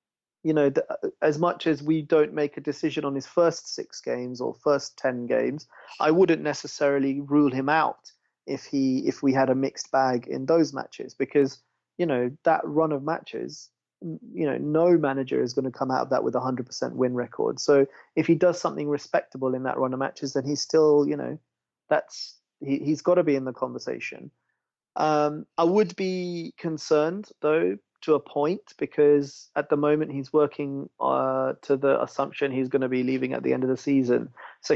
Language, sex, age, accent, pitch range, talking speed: English, male, 30-49, British, 135-155 Hz, 200 wpm